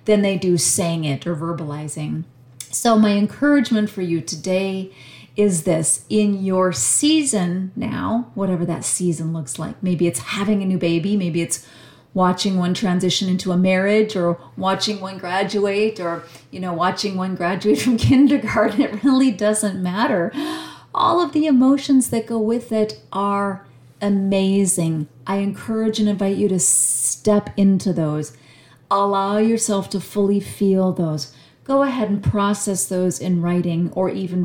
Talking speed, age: 155 wpm, 40-59